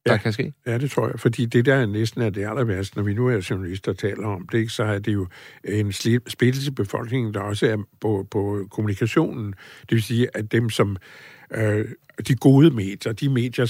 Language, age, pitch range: English, 60-79, 105-125 Hz